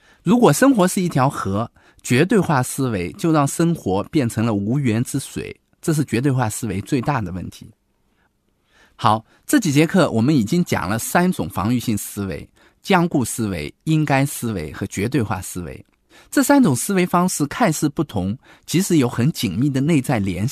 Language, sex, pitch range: Chinese, male, 110-175 Hz